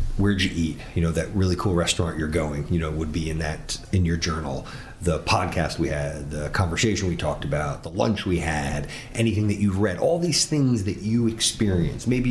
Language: English